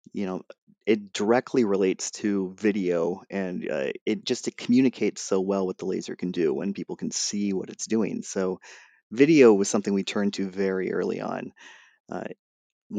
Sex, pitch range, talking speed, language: male, 95-110 Hz, 175 wpm, English